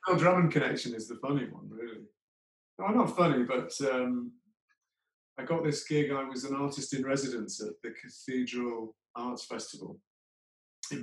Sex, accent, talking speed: male, British, 165 wpm